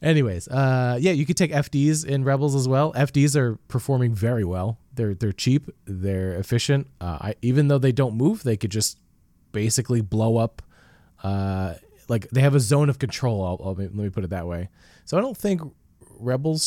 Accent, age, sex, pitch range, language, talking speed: American, 20-39, male, 95-140 Hz, English, 200 wpm